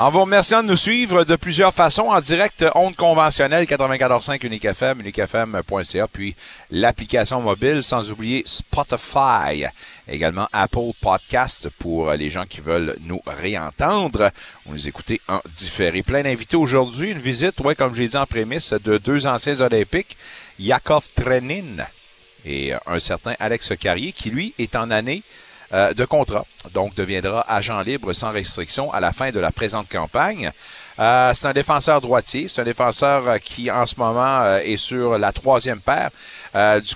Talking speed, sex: 160 wpm, male